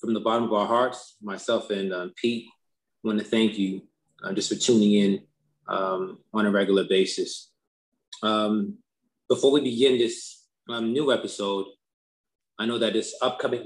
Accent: American